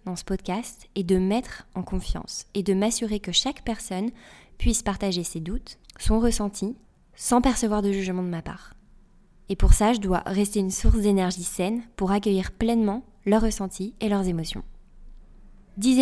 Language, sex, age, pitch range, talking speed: French, female, 20-39, 185-215 Hz, 170 wpm